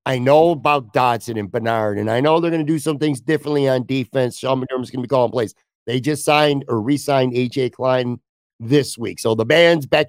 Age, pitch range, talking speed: 50-69, 120-150 Hz, 230 wpm